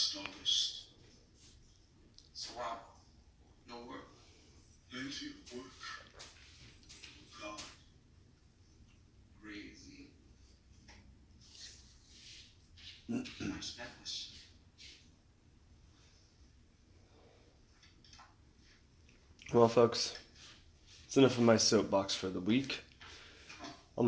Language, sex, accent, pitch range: English, male, American, 100-120 Hz